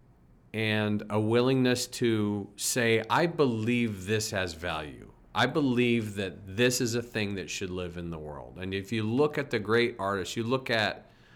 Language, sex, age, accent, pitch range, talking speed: English, male, 40-59, American, 95-115 Hz, 180 wpm